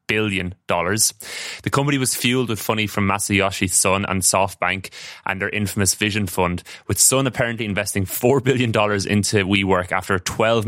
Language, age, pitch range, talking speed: English, 20-39, 95-110 Hz, 170 wpm